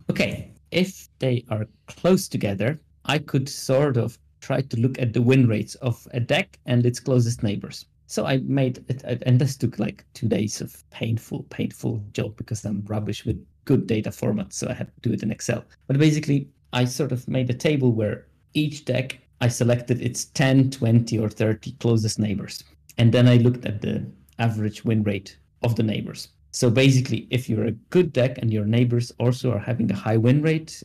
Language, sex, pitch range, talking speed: English, male, 110-130 Hz, 200 wpm